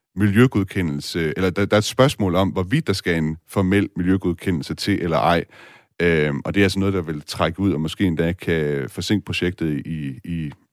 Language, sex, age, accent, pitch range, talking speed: Danish, male, 30-49, native, 85-105 Hz, 195 wpm